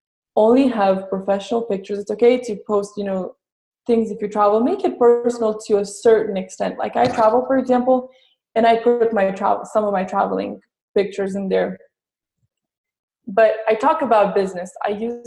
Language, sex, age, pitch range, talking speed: English, female, 20-39, 200-235 Hz, 175 wpm